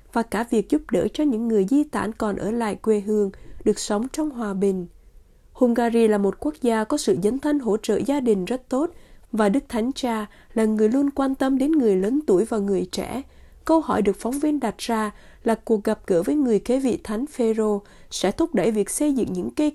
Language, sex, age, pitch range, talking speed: Vietnamese, female, 20-39, 210-265 Hz, 230 wpm